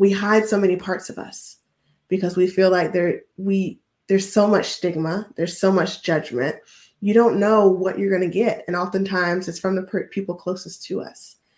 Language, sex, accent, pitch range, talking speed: English, female, American, 180-200 Hz, 200 wpm